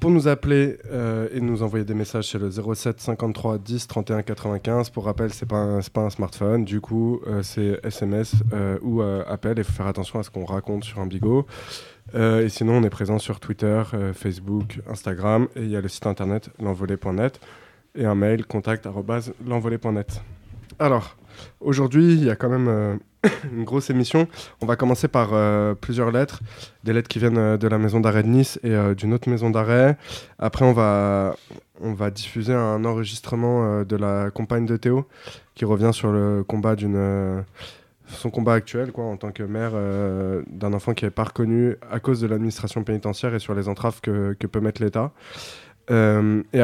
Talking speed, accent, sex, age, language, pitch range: 195 wpm, French, male, 20-39, French, 105-120 Hz